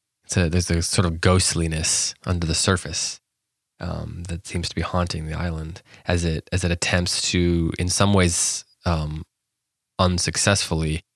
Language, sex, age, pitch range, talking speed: English, male, 20-39, 85-95 Hz, 155 wpm